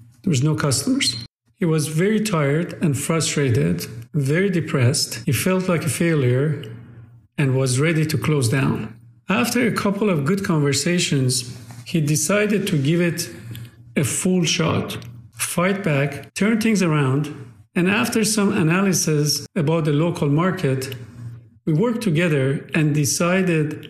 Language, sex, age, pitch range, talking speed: English, male, 50-69, 130-180 Hz, 140 wpm